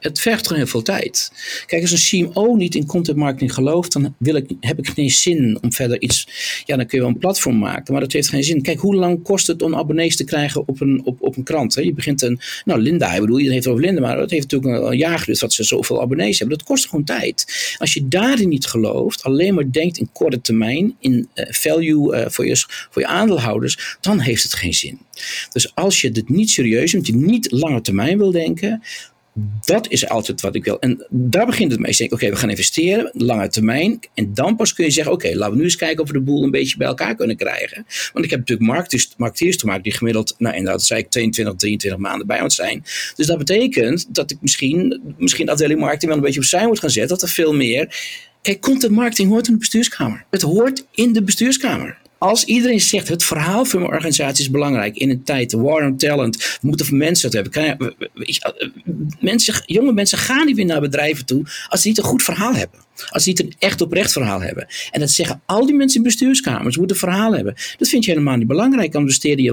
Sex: male